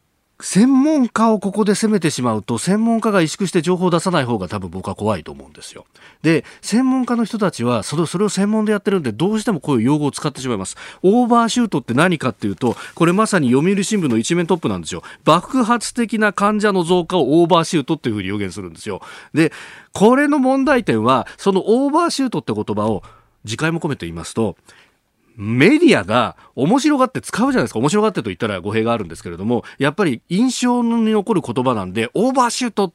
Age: 40-59